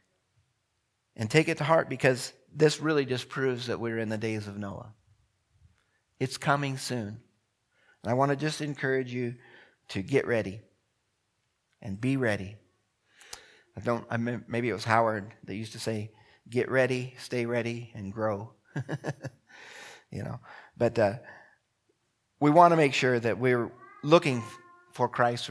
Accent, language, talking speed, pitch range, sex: American, English, 155 wpm, 110-130 Hz, male